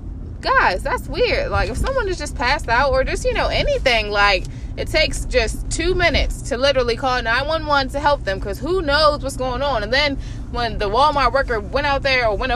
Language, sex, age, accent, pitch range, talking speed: English, female, 20-39, American, 230-325 Hz, 215 wpm